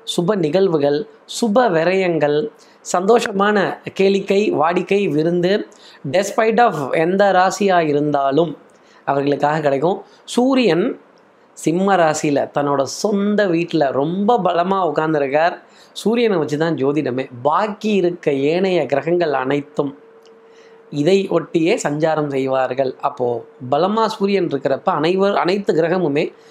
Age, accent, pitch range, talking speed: 20-39, native, 145-190 Hz, 100 wpm